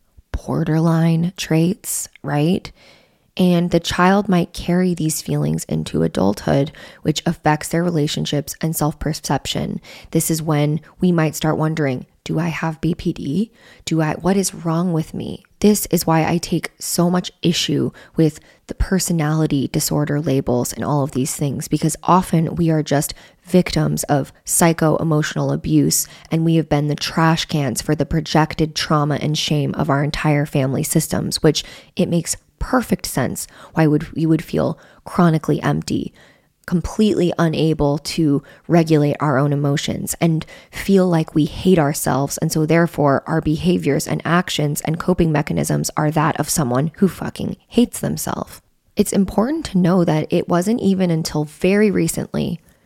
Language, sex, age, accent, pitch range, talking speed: English, female, 20-39, American, 145-175 Hz, 155 wpm